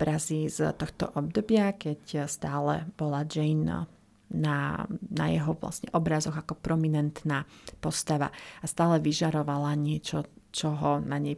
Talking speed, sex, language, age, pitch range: 115 wpm, female, Slovak, 30-49, 155-180 Hz